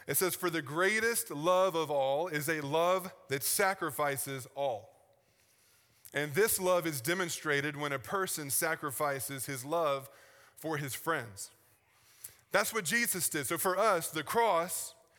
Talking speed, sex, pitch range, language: 145 wpm, male, 150-180 Hz, English